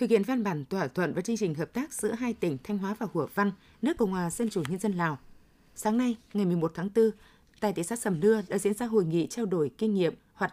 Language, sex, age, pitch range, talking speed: Vietnamese, female, 20-39, 180-220 Hz, 275 wpm